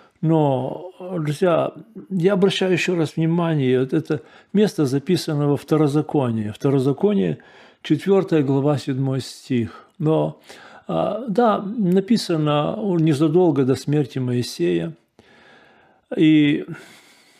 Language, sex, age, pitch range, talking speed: Russian, male, 40-59, 145-185 Hz, 90 wpm